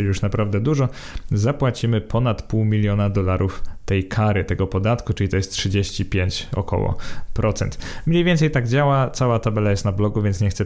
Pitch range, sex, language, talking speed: 105-125 Hz, male, Polish, 170 wpm